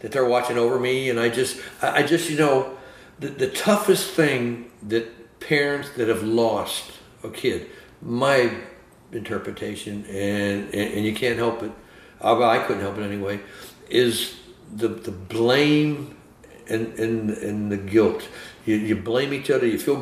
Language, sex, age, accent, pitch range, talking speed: English, male, 60-79, American, 105-120 Hz, 160 wpm